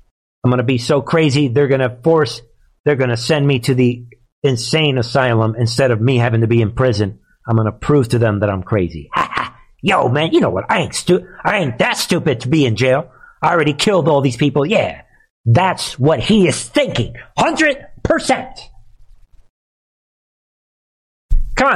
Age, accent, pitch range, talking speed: 50-69, American, 120-165 Hz, 185 wpm